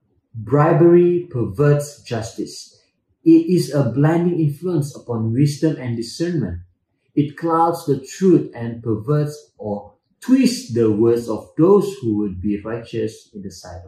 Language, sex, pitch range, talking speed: English, male, 110-160 Hz, 135 wpm